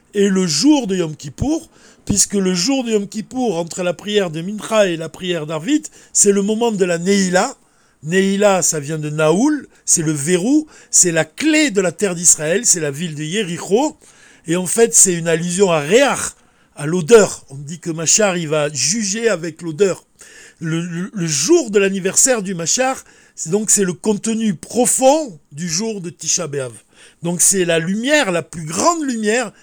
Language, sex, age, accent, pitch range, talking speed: French, male, 50-69, French, 165-220 Hz, 190 wpm